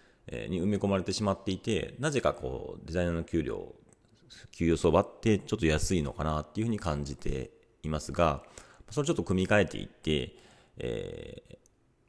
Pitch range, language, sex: 80-115 Hz, Japanese, male